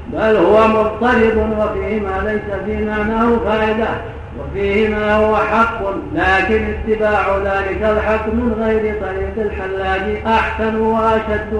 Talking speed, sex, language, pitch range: 120 wpm, male, Arabic, 195-220 Hz